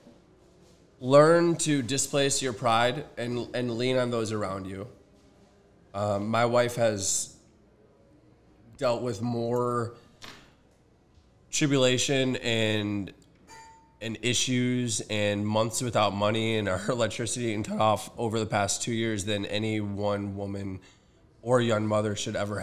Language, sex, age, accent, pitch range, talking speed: English, male, 20-39, American, 100-120 Hz, 125 wpm